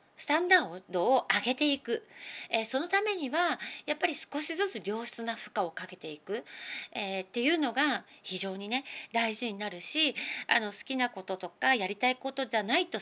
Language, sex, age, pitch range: Japanese, female, 40-59, 200-290 Hz